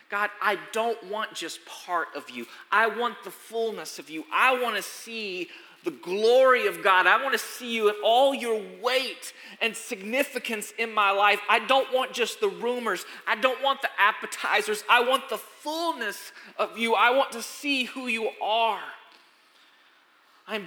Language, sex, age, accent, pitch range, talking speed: English, male, 30-49, American, 240-320 Hz, 175 wpm